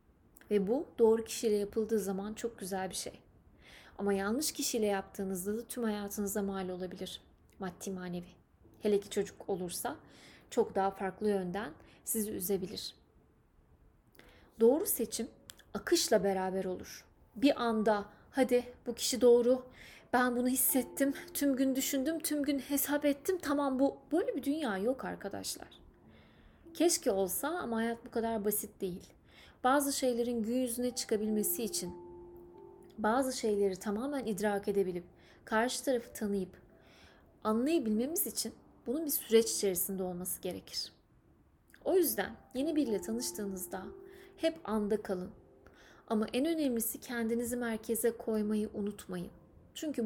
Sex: female